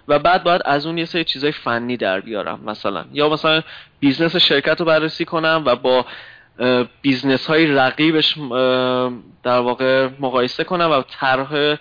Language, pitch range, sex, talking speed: Persian, 125-160 Hz, male, 145 wpm